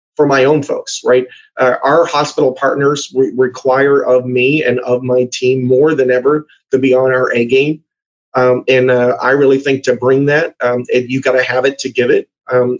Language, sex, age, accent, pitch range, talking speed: English, male, 30-49, American, 130-155 Hz, 210 wpm